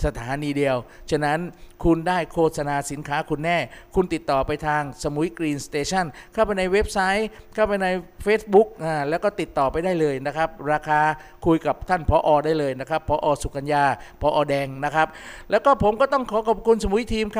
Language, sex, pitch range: Thai, male, 155-205 Hz